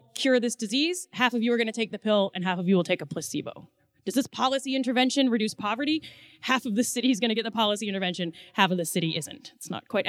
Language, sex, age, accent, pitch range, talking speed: English, female, 30-49, American, 190-245 Hz, 255 wpm